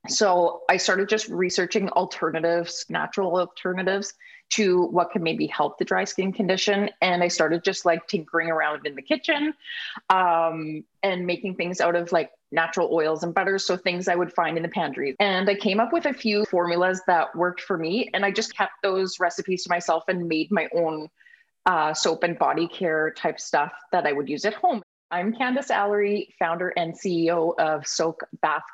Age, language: 30-49, English